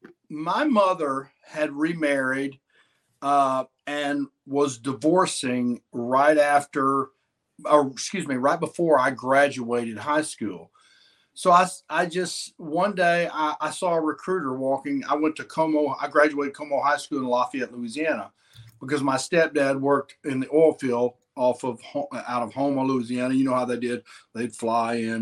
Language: English